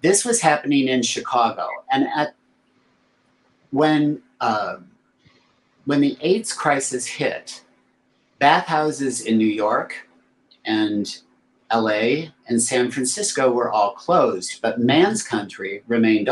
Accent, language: American, English